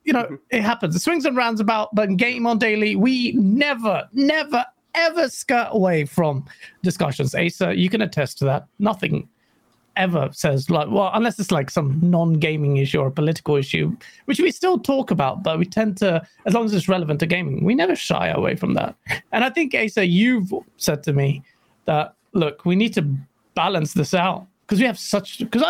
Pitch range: 175-245 Hz